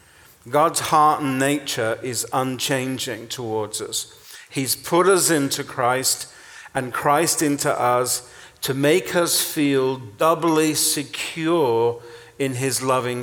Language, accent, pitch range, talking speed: English, British, 120-150 Hz, 120 wpm